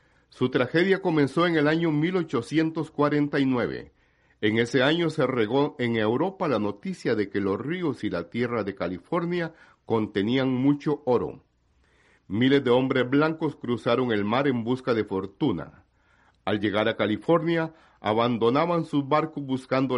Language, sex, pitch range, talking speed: Spanish, male, 110-150 Hz, 140 wpm